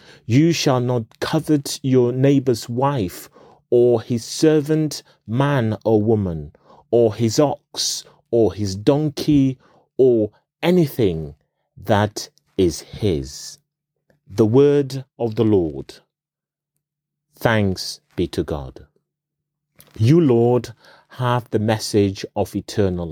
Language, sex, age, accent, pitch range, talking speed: English, male, 30-49, British, 110-145 Hz, 105 wpm